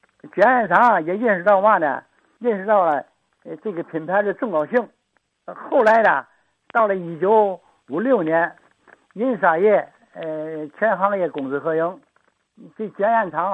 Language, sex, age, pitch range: Chinese, male, 60-79, 170-235 Hz